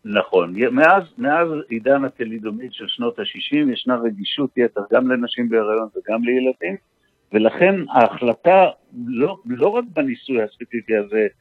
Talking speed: 125 wpm